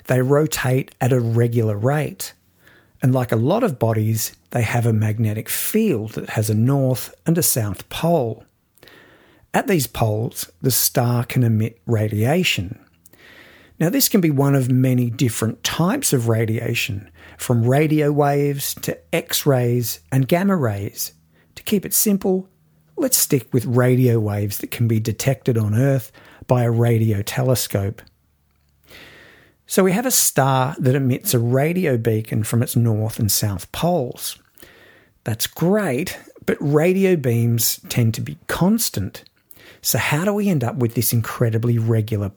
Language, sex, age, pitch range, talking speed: English, male, 50-69, 110-140 Hz, 150 wpm